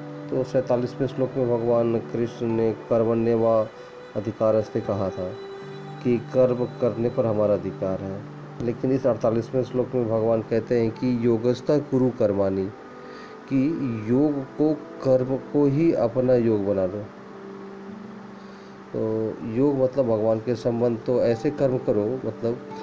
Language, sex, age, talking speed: Hindi, male, 30-49, 135 wpm